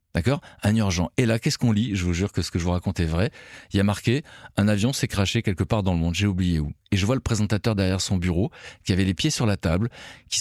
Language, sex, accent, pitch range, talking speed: French, male, French, 95-125 Hz, 305 wpm